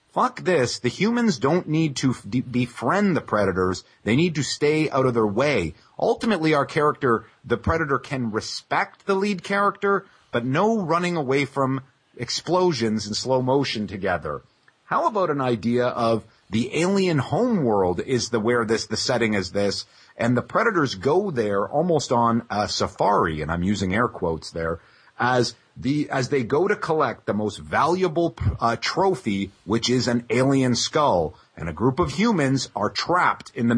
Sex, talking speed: male, 170 wpm